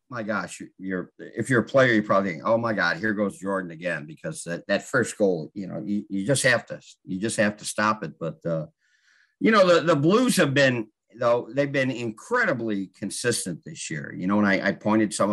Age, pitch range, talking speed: 50-69, 90-115 Hz, 225 wpm